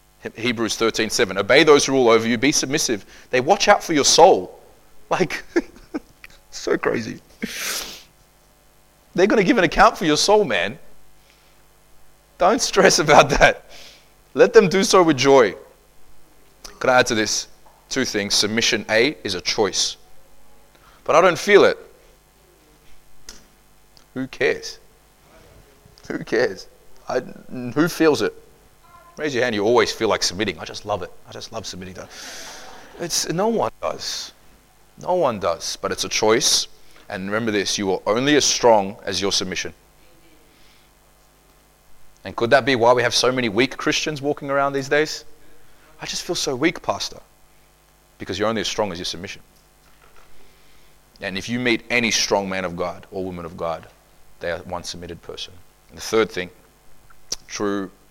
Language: English